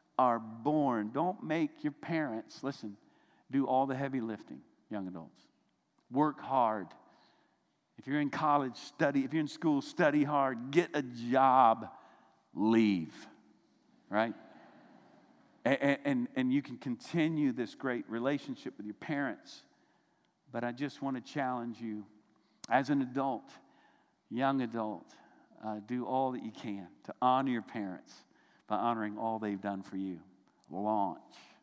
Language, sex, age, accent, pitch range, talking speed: English, male, 50-69, American, 110-145 Hz, 140 wpm